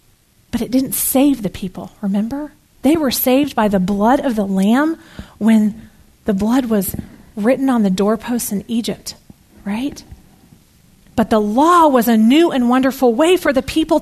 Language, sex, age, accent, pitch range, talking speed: English, female, 40-59, American, 205-270 Hz, 165 wpm